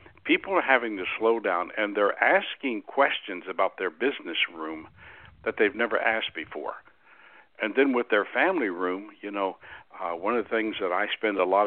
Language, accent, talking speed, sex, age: English, American, 190 wpm, male, 60-79